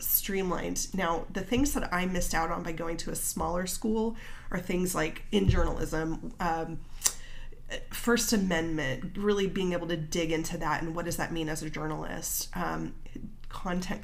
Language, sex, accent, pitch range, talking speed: English, female, American, 160-220 Hz, 170 wpm